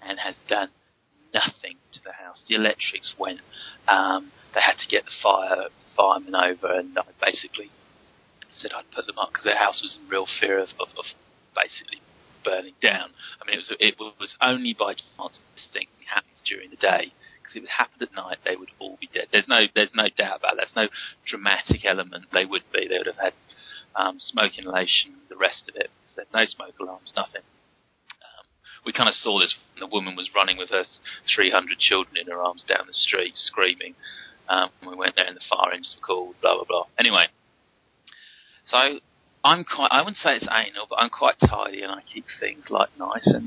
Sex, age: male, 30-49